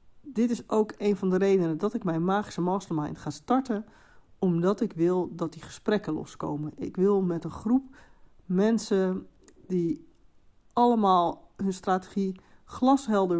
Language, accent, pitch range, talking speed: Dutch, Dutch, 165-205 Hz, 145 wpm